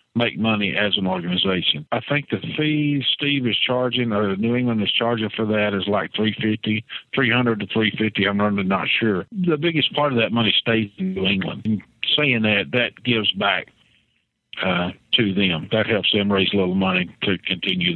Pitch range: 95-125 Hz